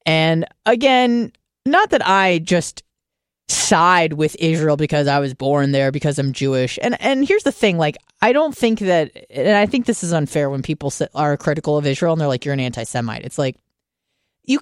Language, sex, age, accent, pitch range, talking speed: English, female, 30-49, American, 145-210 Hz, 200 wpm